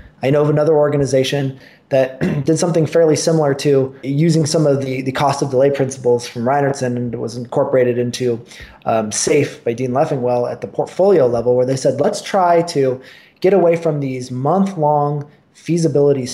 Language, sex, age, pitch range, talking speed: English, male, 20-39, 130-175 Hz, 175 wpm